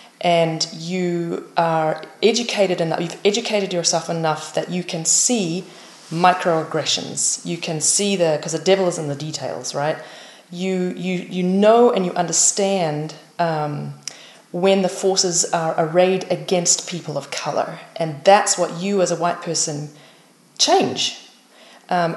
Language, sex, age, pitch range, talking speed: English, female, 30-49, 165-195 Hz, 145 wpm